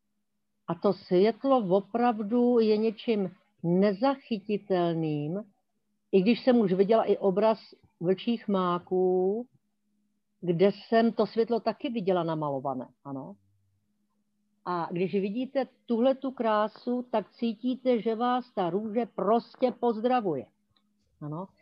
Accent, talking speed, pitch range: native, 110 wpm, 180-225 Hz